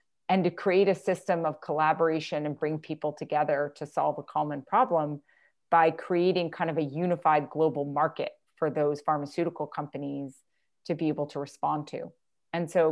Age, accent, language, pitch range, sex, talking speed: 30-49, American, English, 155-190 Hz, female, 165 wpm